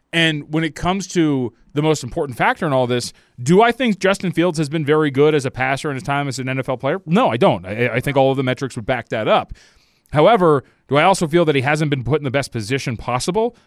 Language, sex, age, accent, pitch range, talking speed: English, male, 30-49, American, 145-200 Hz, 265 wpm